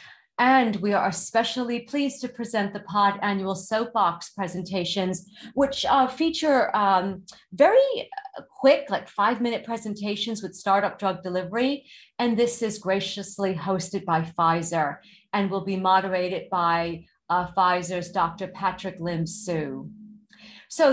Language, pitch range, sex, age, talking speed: English, 180-230 Hz, female, 40-59, 130 wpm